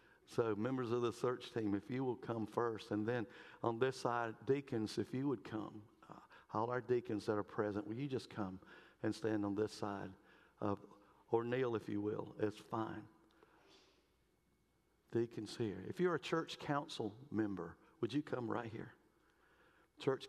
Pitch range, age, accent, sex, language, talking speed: 105-125 Hz, 50-69, American, male, English, 175 wpm